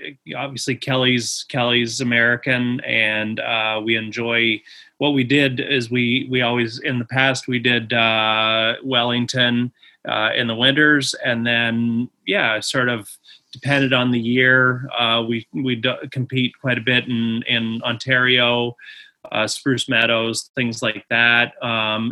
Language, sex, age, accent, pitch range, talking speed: English, male, 30-49, American, 115-130 Hz, 145 wpm